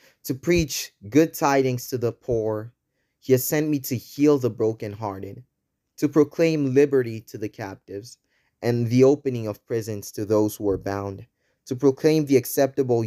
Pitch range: 105-135 Hz